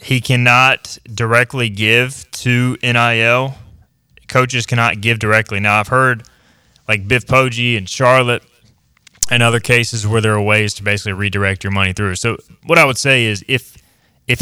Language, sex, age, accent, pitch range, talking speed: English, male, 20-39, American, 100-120 Hz, 160 wpm